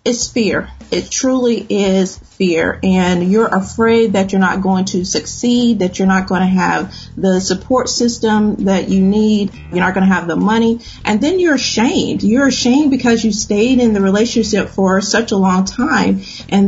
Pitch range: 190-230 Hz